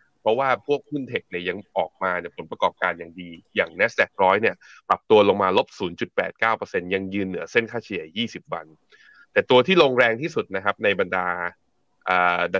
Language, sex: Thai, male